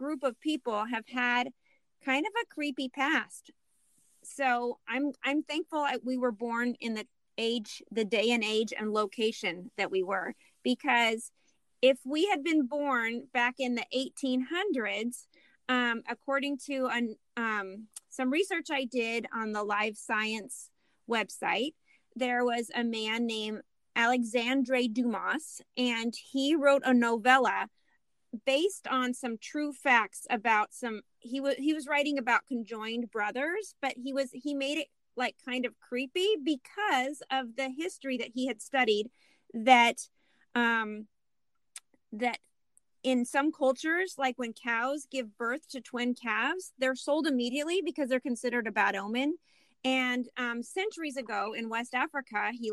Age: 30-49